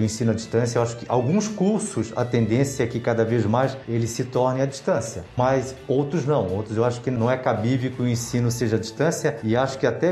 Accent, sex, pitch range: Brazilian, male, 120-150 Hz